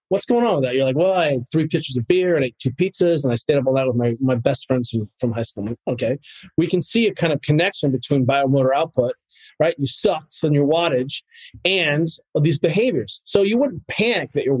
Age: 30-49